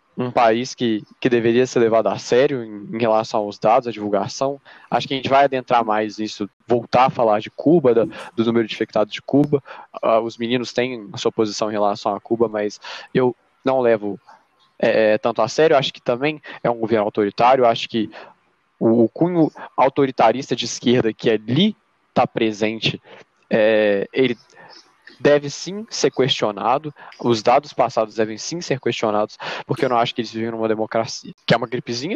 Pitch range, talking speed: 115-155 Hz, 175 wpm